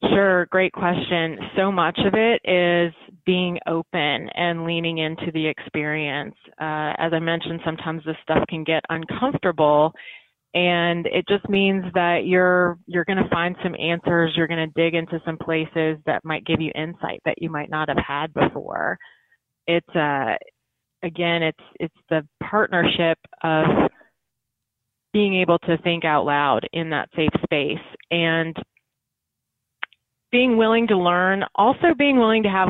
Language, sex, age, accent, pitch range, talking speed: English, female, 30-49, American, 155-180 Hz, 155 wpm